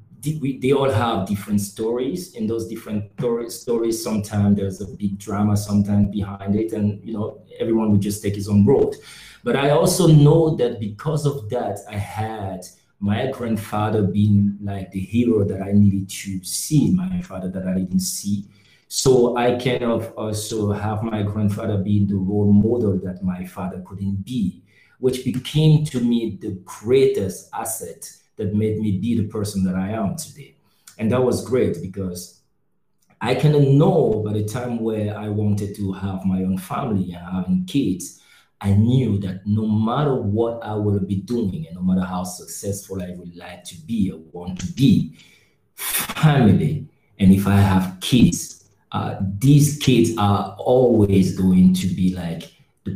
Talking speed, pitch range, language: 170 wpm, 100-125 Hz, English